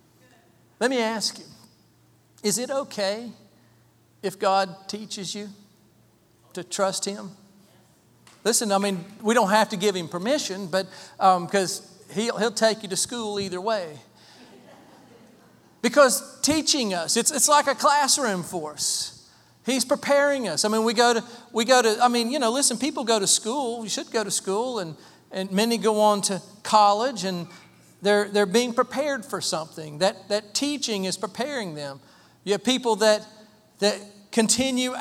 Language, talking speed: English, 165 wpm